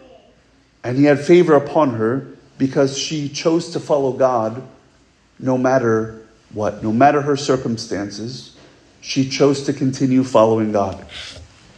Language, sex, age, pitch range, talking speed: English, male, 40-59, 135-185 Hz, 125 wpm